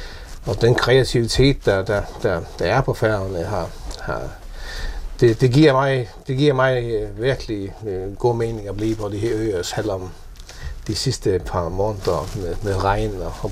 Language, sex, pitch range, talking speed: Danish, male, 100-135 Hz, 170 wpm